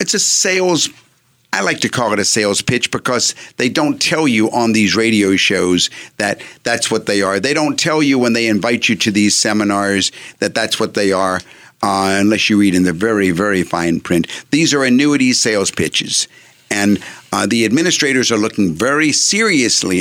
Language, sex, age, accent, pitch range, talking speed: English, male, 50-69, American, 105-155 Hz, 190 wpm